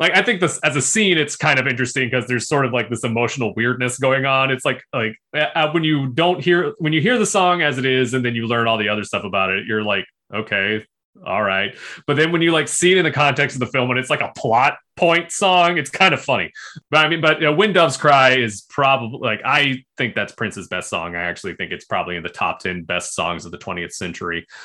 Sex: male